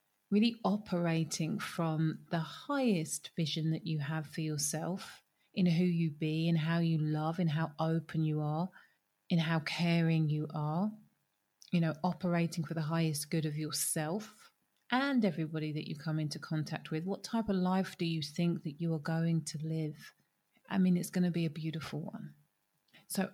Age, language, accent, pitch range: 30-49, English, British, 160-210 Hz